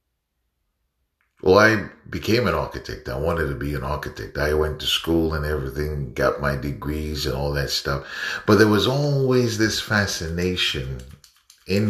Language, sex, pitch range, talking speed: English, male, 75-100 Hz, 155 wpm